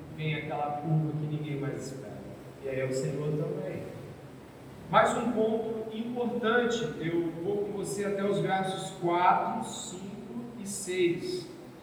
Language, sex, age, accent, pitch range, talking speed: Portuguese, male, 40-59, Brazilian, 170-205 Hz, 140 wpm